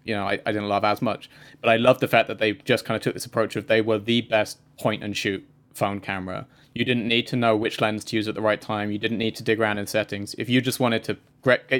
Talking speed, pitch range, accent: 295 wpm, 105-125 Hz, British